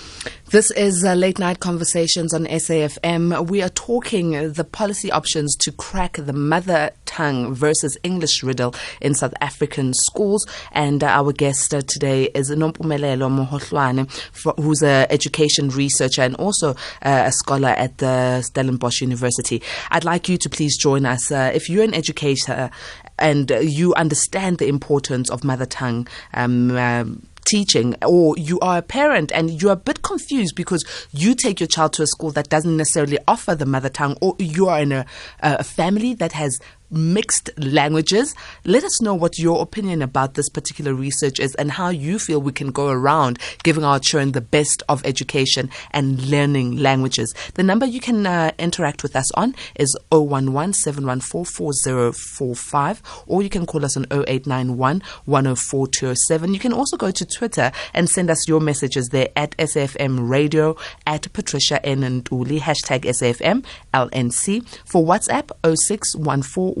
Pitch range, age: 135-170 Hz, 20-39